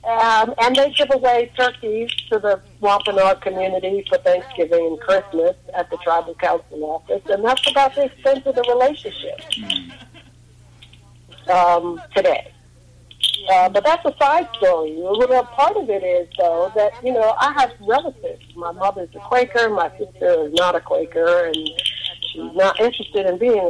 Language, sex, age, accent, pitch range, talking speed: English, female, 50-69, American, 170-260 Hz, 155 wpm